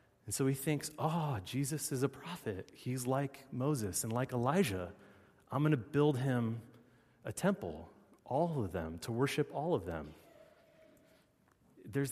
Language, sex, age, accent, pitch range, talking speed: English, male, 30-49, American, 105-140 Hz, 155 wpm